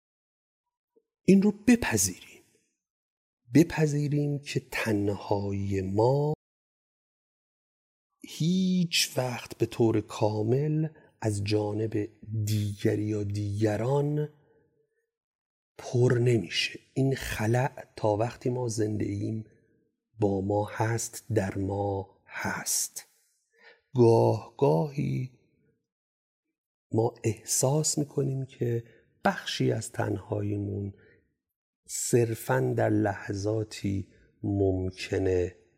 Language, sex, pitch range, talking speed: Persian, male, 100-130 Hz, 75 wpm